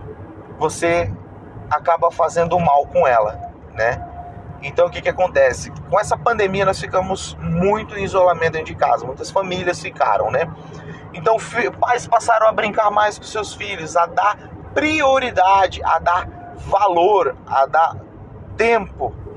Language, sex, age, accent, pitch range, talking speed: Portuguese, male, 30-49, Brazilian, 150-210 Hz, 145 wpm